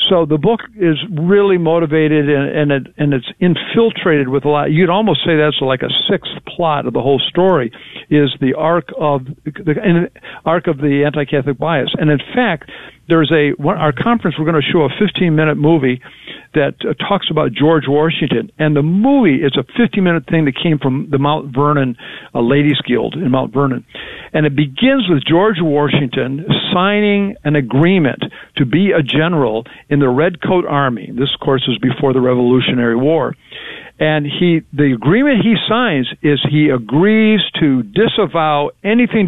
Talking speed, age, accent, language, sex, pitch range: 170 wpm, 60-79, American, English, male, 145-185 Hz